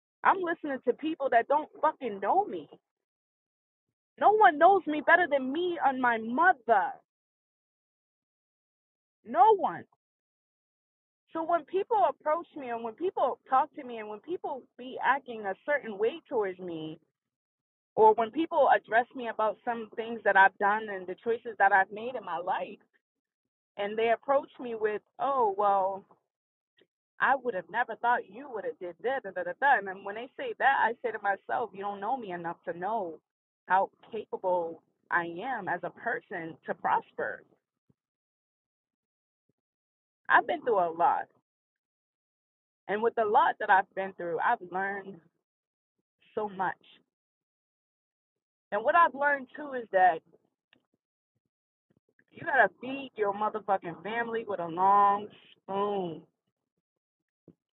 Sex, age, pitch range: female, 20-39, 195-300 Hz